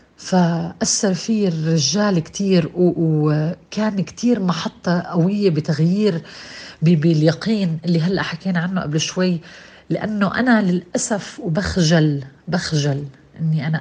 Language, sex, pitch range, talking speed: Arabic, female, 150-185 Hz, 100 wpm